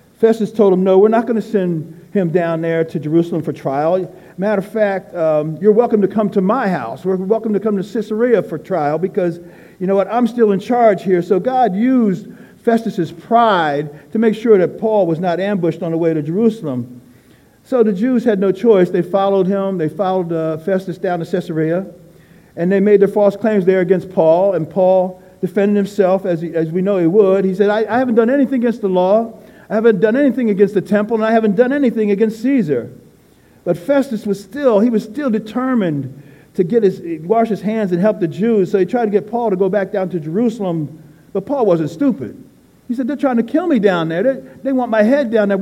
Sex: male